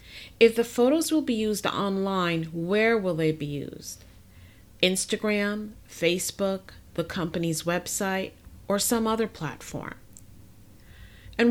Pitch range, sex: 155-205 Hz, female